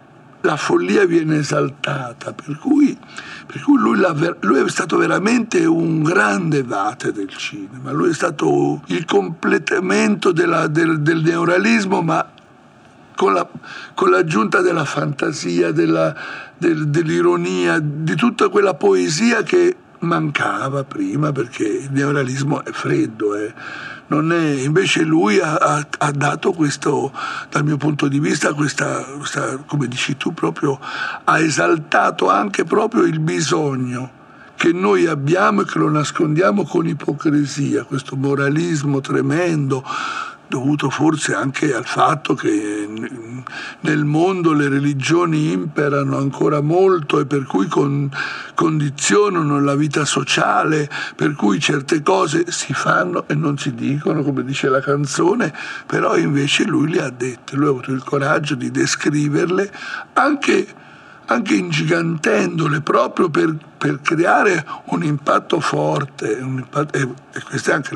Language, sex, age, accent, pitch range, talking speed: Italian, male, 60-79, native, 140-170 Hz, 125 wpm